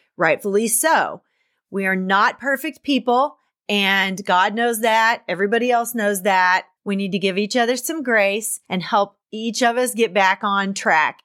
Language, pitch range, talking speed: English, 195-240 Hz, 170 wpm